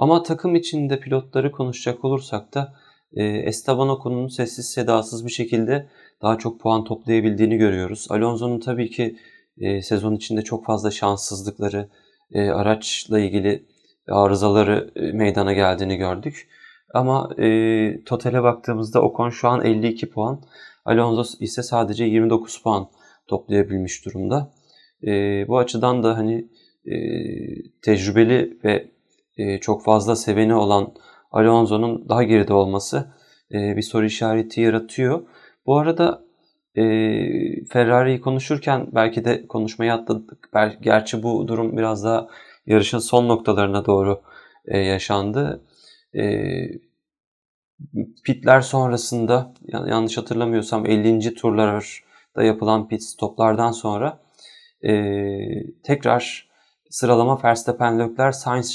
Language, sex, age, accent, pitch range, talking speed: Turkish, male, 30-49, native, 105-120 Hz, 105 wpm